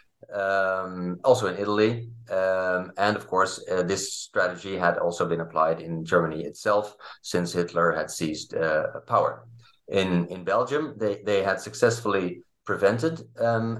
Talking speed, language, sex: 145 wpm, English, male